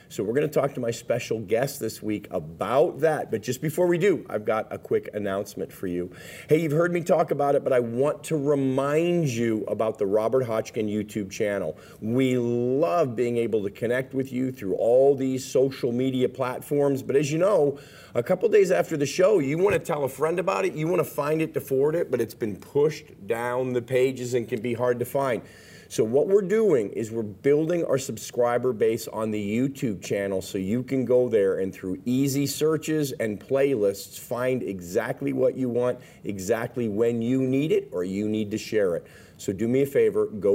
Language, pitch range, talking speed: English, 115-145 Hz, 215 wpm